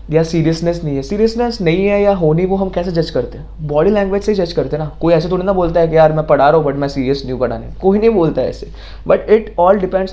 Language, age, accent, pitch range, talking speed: Hindi, 20-39, native, 130-175 Hz, 310 wpm